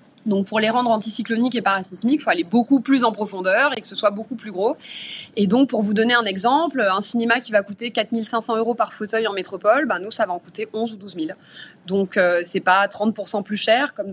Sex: female